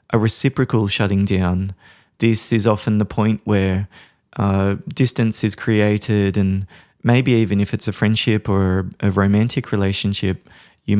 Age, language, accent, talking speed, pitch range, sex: 20-39, English, Australian, 140 wpm, 100-115 Hz, male